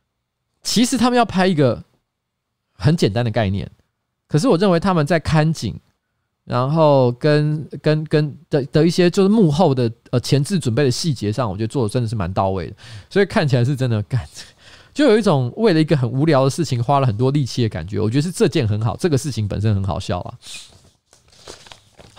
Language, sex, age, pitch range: Chinese, male, 20-39, 115-155 Hz